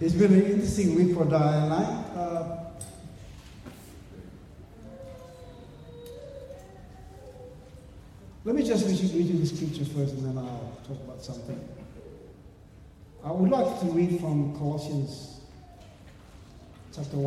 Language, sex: English, male